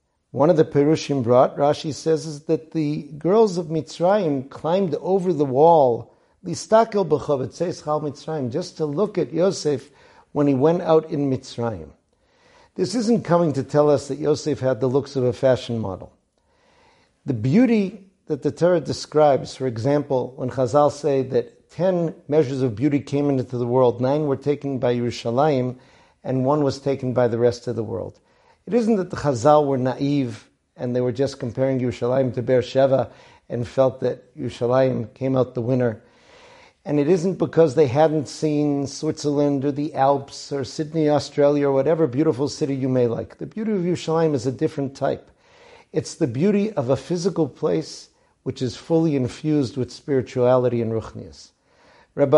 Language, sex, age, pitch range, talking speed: English, male, 50-69, 130-160 Hz, 170 wpm